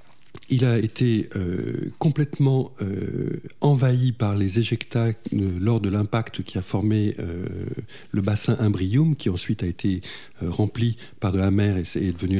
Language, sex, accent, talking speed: French, male, French, 160 wpm